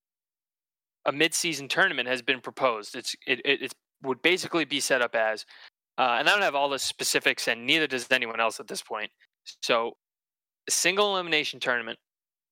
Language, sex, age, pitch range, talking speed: English, male, 20-39, 115-150 Hz, 175 wpm